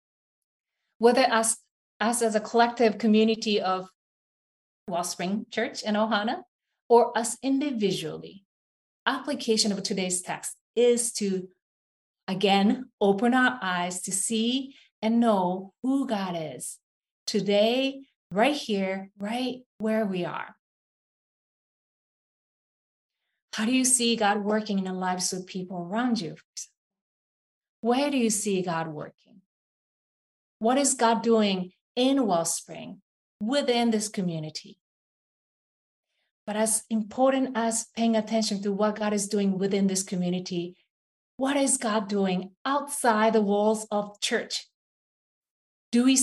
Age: 30-49